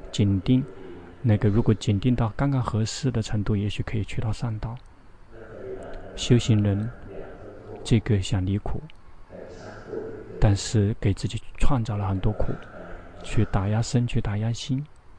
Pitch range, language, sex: 100-120 Hz, Chinese, male